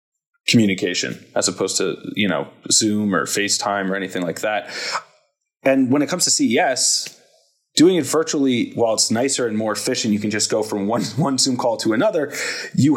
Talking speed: 185 wpm